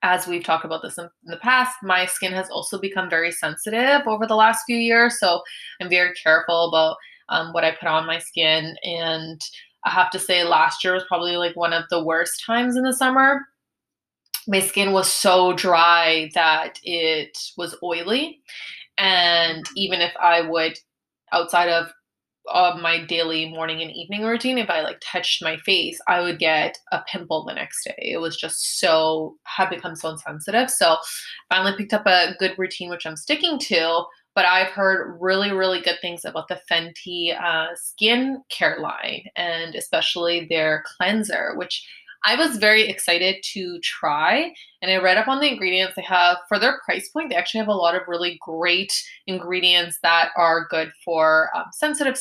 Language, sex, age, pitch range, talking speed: English, female, 20-39, 170-200 Hz, 185 wpm